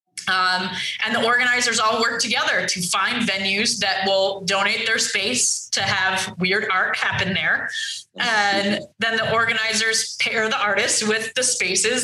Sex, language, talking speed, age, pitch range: female, English, 155 wpm, 20-39, 195-235 Hz